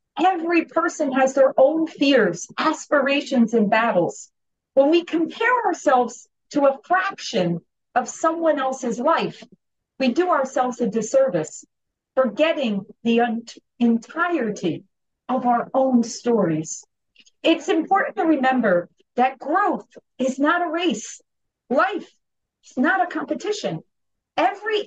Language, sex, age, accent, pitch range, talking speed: English, female, 40-59, American, 240-335 Hz, 115 wpm